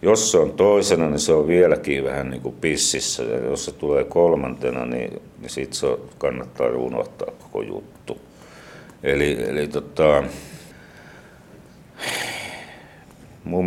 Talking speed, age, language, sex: 125 wpm, 60-79, Finnish, male